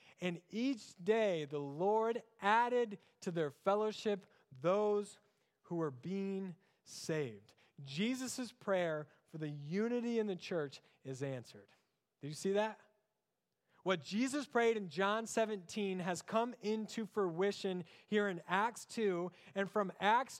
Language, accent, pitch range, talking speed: English, American, 155-210 Hz, 130 wpm